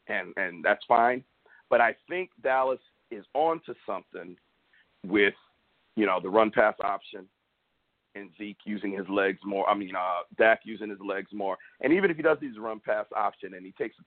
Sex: male